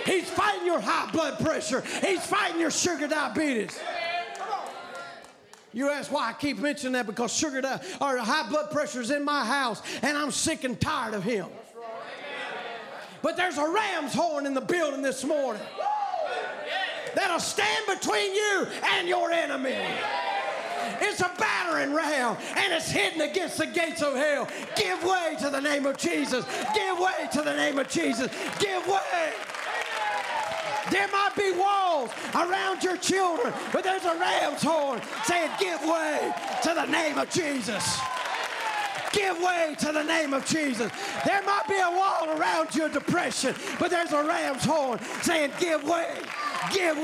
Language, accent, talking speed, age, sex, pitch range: English, American, 160 wpm, 40-59, male, 285-360 Hz